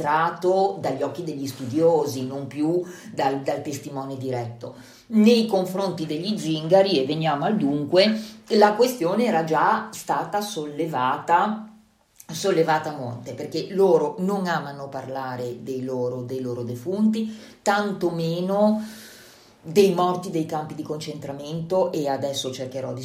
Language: Italian